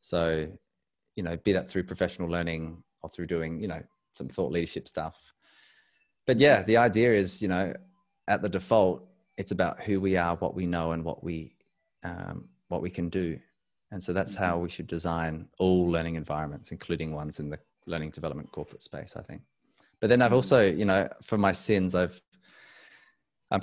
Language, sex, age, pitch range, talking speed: English, male, 20-39, 85-95 Hz, 190 wpm